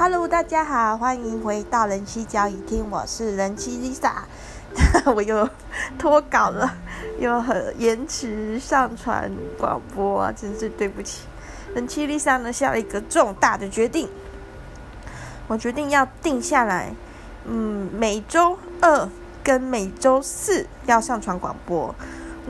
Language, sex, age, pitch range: Chinese, female, 20-39, 215-280 Hz